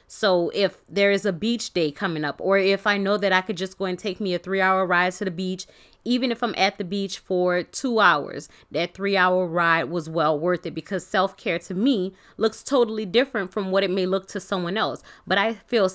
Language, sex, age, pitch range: English, female, 20-39, 175-220 Hz